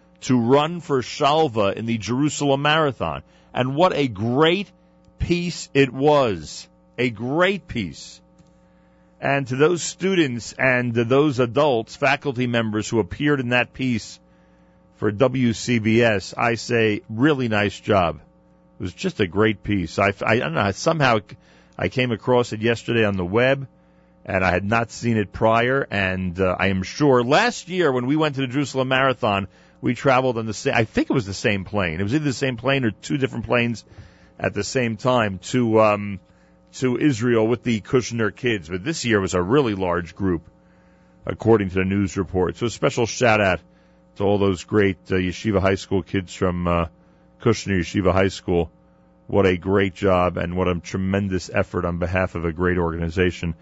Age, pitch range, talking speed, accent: 40-59, 90-125 Hz, 180 wpm, American